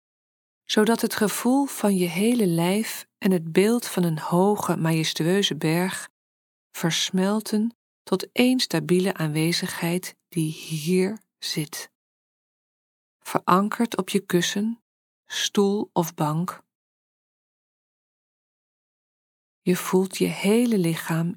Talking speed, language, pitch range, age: 100 wpm, Dutch, 170-215 Hz, 40-59